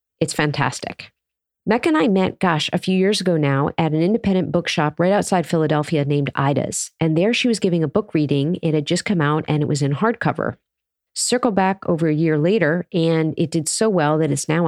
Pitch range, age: 150-205 Hz, 40-59